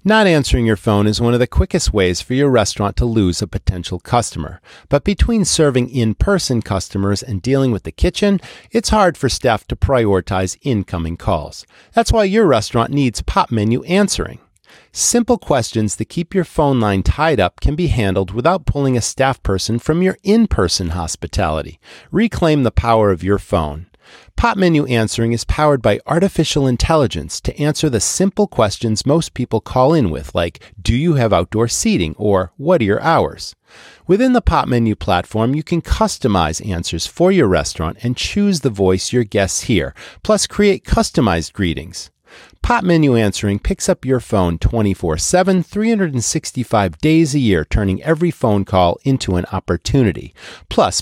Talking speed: 170 wpm